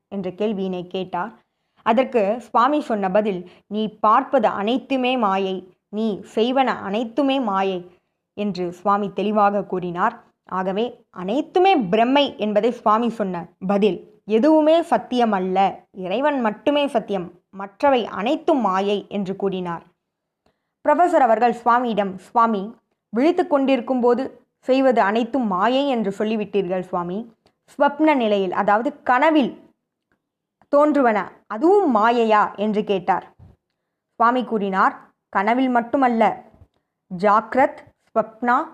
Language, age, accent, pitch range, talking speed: Tamil, 20-39, native, 200-265 Hz, 95 wpm